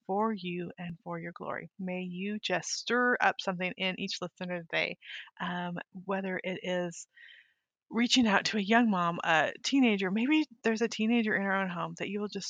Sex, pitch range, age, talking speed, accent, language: female, 185-225 Hz, 30-49, 185 wpm, American, English